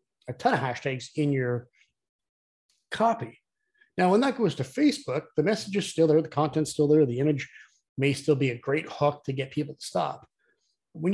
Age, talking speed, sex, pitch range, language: 30-49, 195 wpm, male, 135-185 Hz, English